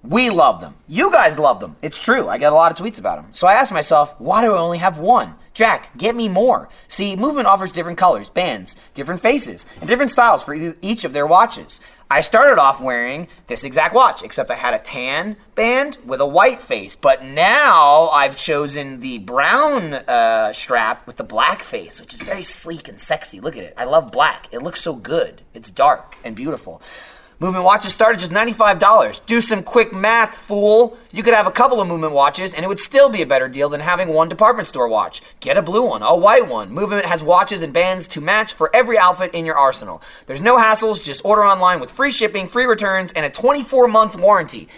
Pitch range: 165-225 Hz